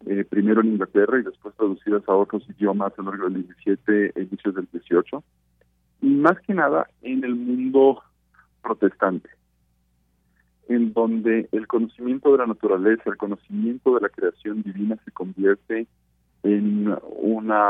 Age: 40-59